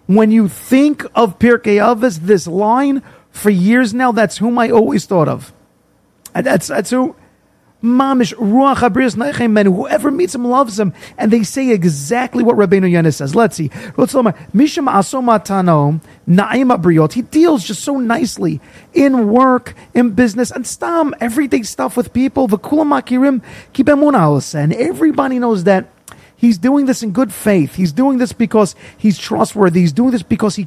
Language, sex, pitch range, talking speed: English, male, 195-255 Hz, 145 wpm